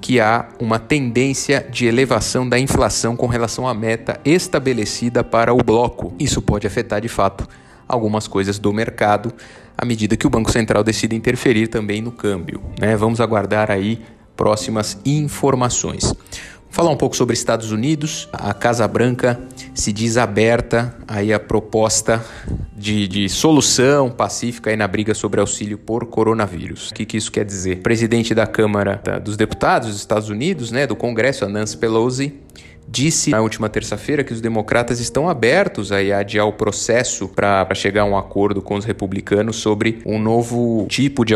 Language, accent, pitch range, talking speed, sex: Portuguese, Brazilian, 105-120 Hz, 170 wpm, male